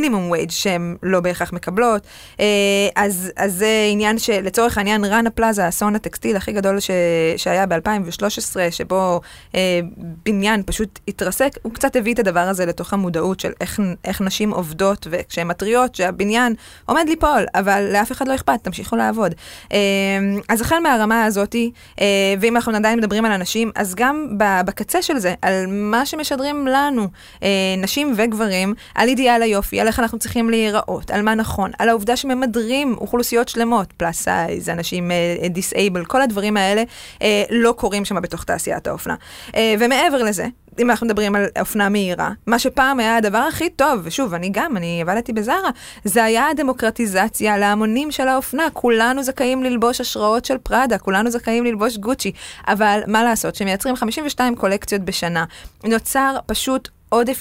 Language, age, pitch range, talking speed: Hebrew, 20-39, 195-235 Hz, 160 wpm